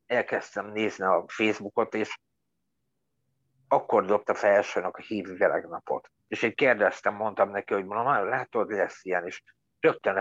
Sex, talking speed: male, 145 wpm